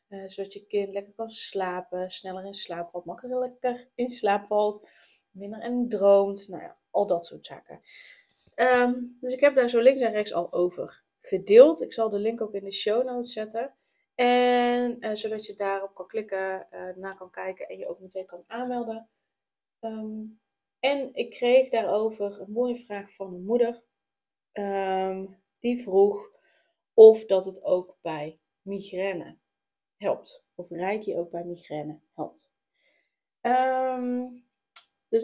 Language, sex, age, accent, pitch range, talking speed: Dutch, female, 20-39, Dutch, 190-235 Hz, 155 wpm